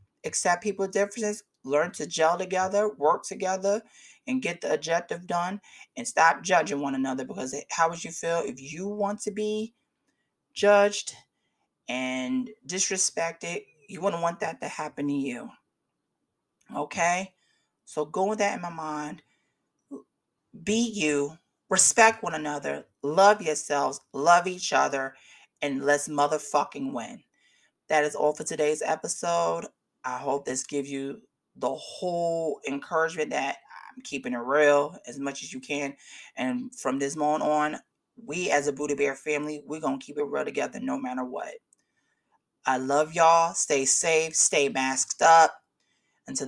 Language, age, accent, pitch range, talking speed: English, 30-49, American, 145-195 Hz, 150 wpm